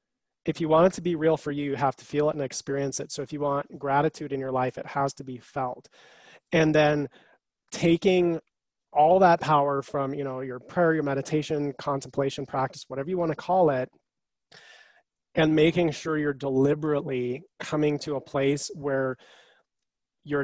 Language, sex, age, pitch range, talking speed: English, male, 30-49, 135-160 Hz, 180 wpm